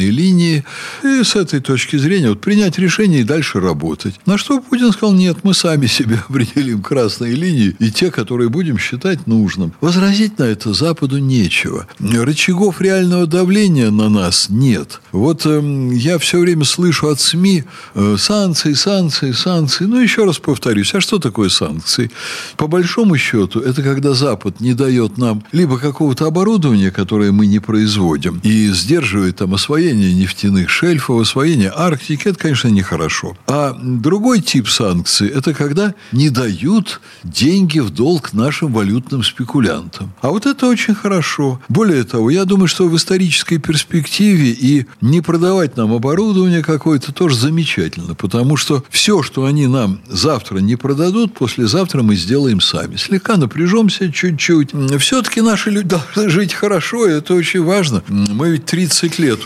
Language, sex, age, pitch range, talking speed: Russian, male, 60-79, 115-180 Hz, 150 wpm